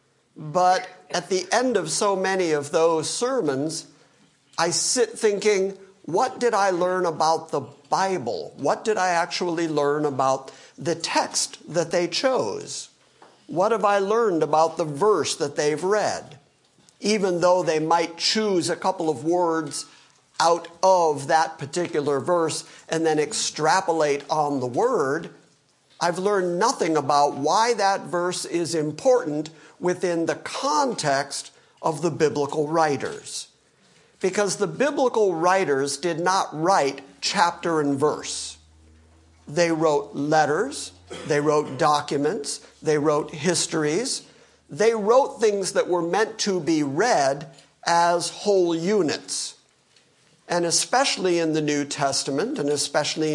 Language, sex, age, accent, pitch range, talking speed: English, male, 50-69, American, 150-190 Hz, 130 wpm